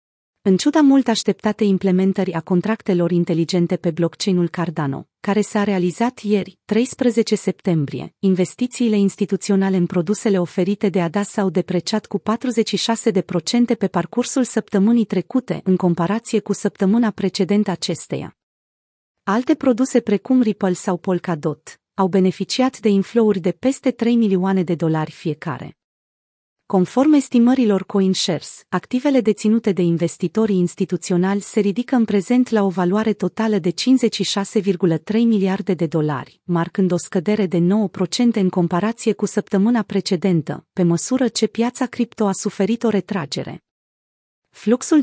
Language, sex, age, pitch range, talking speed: Romanian, female, 30-49, 185-225 Hz, 130 wpm